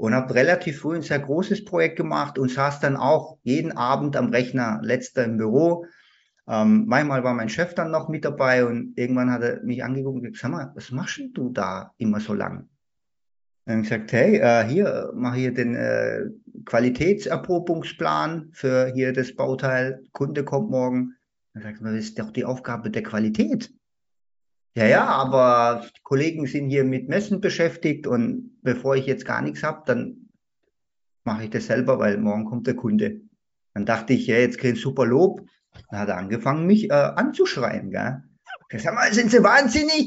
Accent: German